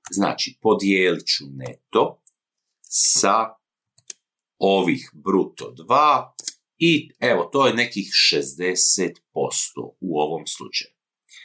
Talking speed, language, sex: 90 wpm, Croatian, male